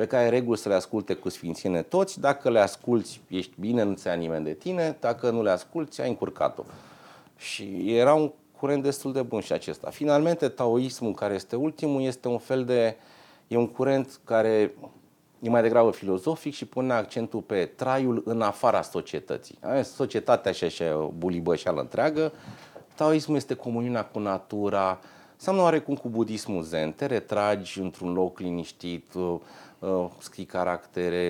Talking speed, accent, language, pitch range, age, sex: 165 wpm, Romanian, English, 95-135 Hz, 30-49, male